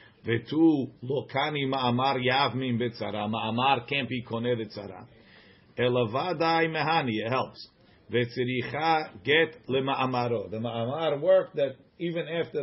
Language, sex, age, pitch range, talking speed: English, male, 50-69, 115-140 Hz, 100 wpm